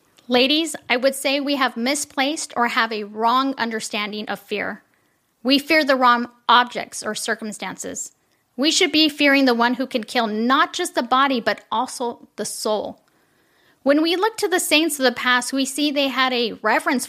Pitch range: 225-280 Hz